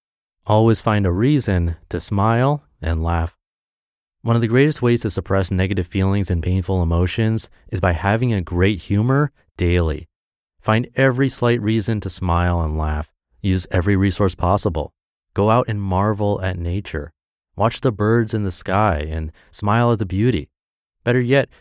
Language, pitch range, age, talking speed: English, 85-115 Hz, 30-49, 160 wpm